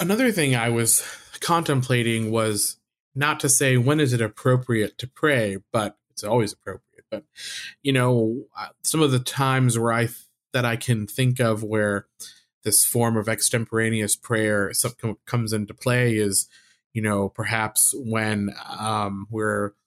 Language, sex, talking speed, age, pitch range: English, male, 150 wpm, 20-39, 110-125 Hz